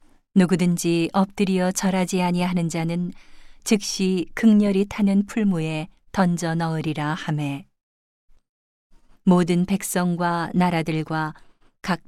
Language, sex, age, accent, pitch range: Korean, female, 40-59, native, 165-195 Hz